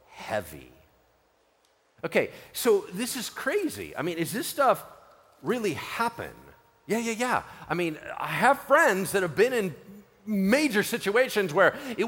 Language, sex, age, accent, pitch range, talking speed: English, male, 50-69, American, 190-265 Hz, 145 wpm